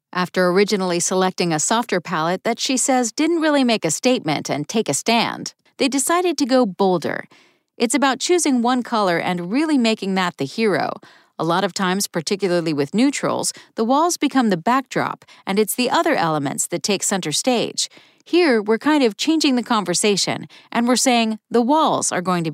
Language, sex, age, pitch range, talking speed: English, female, 40-59, 180-250 Hz, 185 wpm